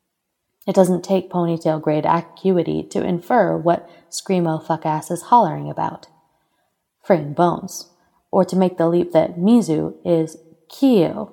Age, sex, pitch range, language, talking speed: 20-39, female, 160-180 Hz, English, 140 wpm